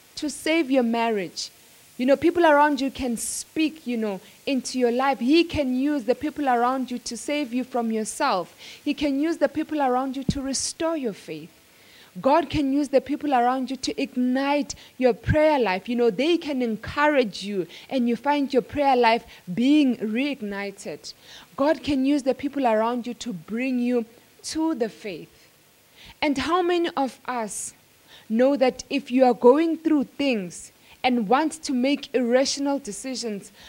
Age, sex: 20-39, female